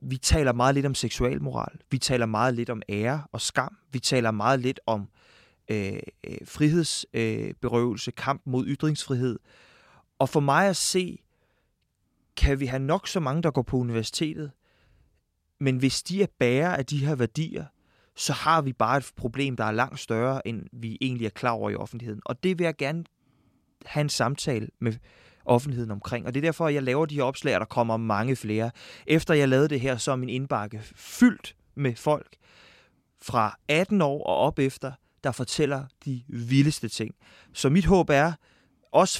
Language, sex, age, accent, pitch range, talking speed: Danish, male, 20-39, native, 115-145 Hz, 180 wpm